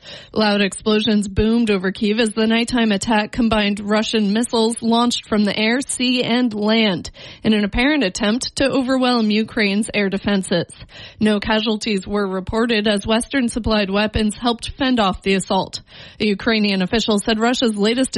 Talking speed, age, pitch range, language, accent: 150 wpm, 30-49, 205-235 Hz, English, American